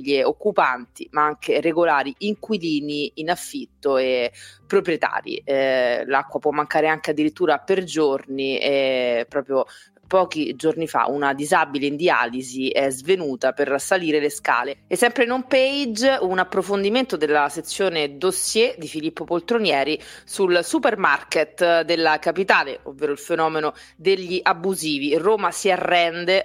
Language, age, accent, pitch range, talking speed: Italian, 30-49, native, 145-190 Hz, 135 wpm